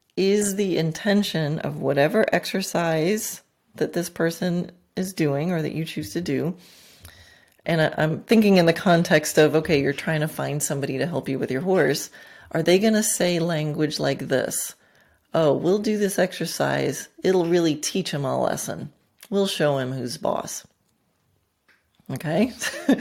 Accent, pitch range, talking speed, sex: American, 155-195 Hz, 160 wpm, female